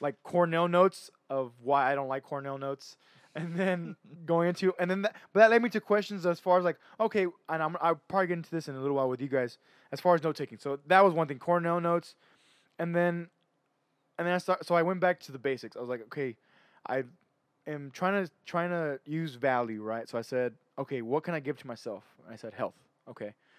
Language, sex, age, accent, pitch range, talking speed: English, male, 20-39, American, 135-170 Hz, 235 wpm